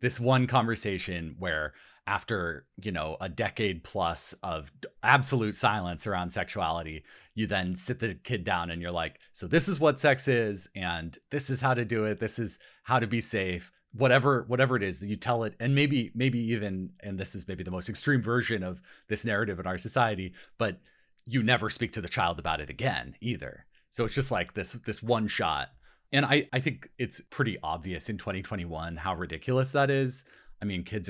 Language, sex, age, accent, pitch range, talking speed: English, male, 30-49, American, 90-130 Hz, 200 wpm